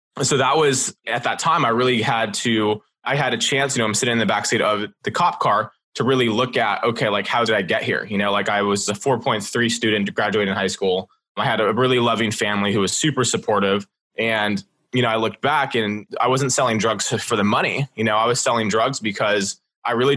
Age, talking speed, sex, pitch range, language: 20-39, 240 wpm, male, 105-125 Hz, English